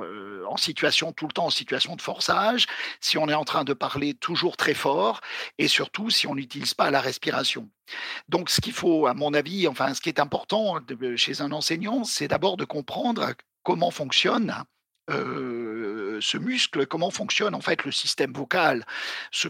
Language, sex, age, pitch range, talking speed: French, male, 50-69, 140-195 Hz, 180 wpm